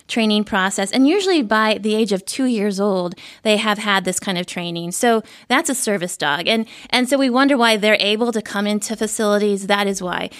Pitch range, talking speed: 200-260 Hz, 220 wpm